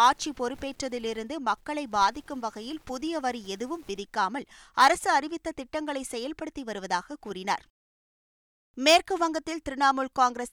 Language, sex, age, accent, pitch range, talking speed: Tamil, female, 20-39, native, 225-285 Hz, 110 wpm